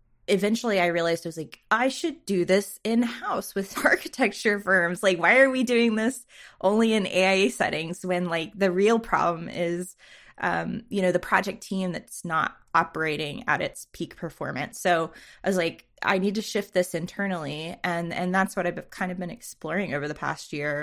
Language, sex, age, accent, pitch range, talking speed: English, female, 20-39, American, 165-195 Hz, 195 wpm